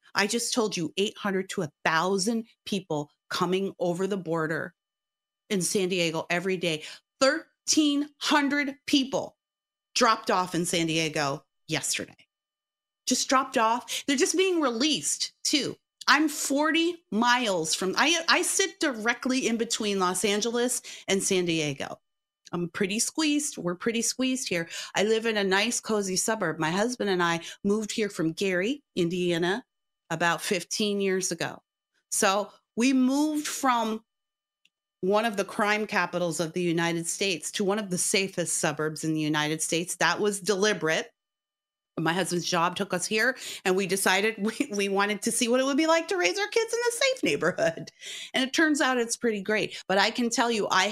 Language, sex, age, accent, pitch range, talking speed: English, female, 30-49, American, 180-235 Hz, 165 wpm